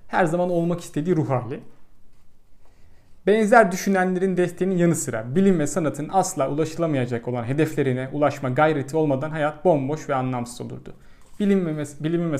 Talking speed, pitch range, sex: 145 wpm, 135-185 Hz, male